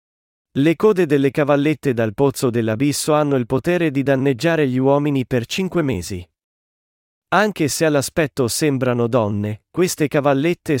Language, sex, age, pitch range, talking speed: Italian, male, 40-59, 125-155 Hz, 135 wpm